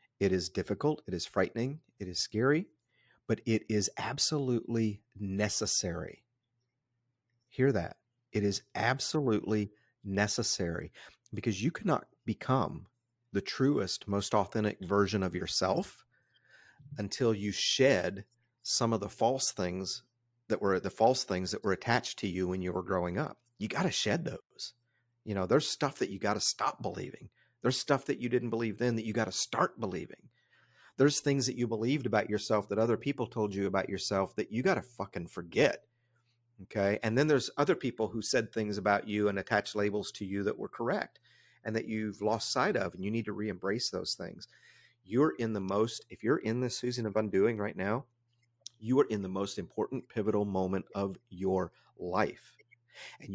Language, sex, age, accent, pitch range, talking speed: English, male, 40-59, American, 100-120 Hz, 180 wpm